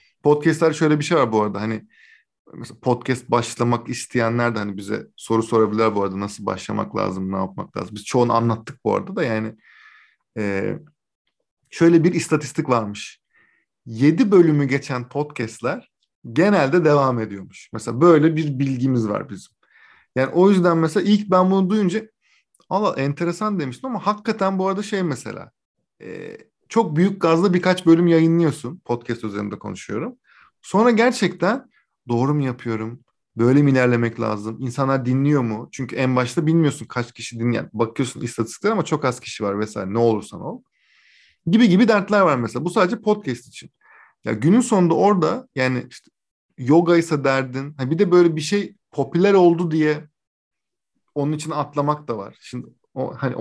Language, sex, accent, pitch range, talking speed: Turkish, male, native, 115-175 Hz, 155 wpm